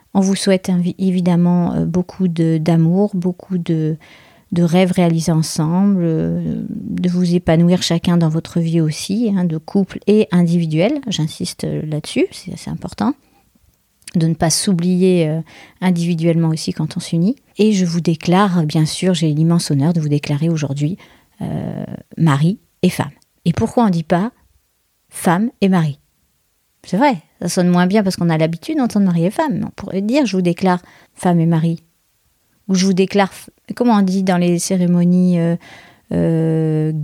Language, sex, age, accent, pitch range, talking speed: French, female, 40-59, French, 165-200 Hz, 160 wpm